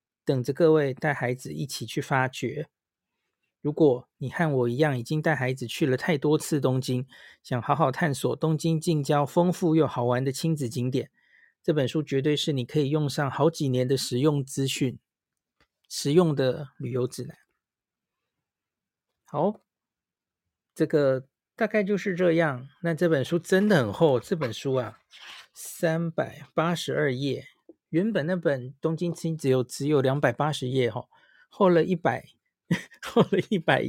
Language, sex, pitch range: Chinese, male, 130-165 Hz